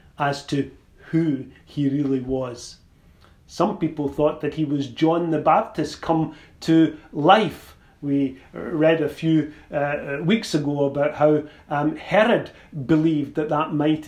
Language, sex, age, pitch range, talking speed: English, male, 40-59, 140-170 Hz, 140 wpm